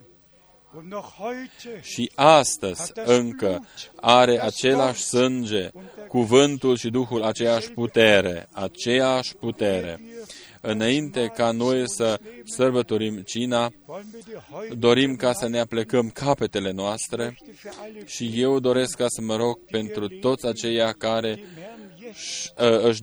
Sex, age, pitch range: male, 20-39, 115-130 Hz